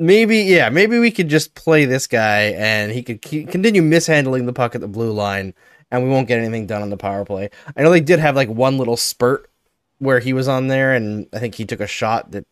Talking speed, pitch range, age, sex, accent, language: 255 wpm, 110-140 Hz, 20-39, male, American, English